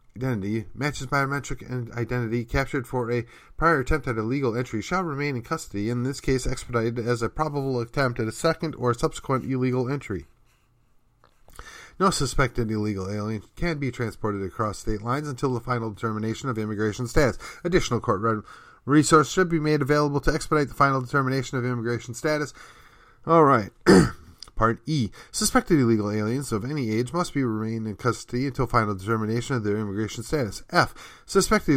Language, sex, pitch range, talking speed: English, male, 115-140 Hz, 165 wpm